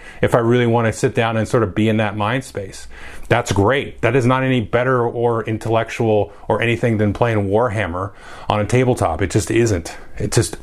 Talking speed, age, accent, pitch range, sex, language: 210 wpm, 30-49, American, 100-125 Hz, male, English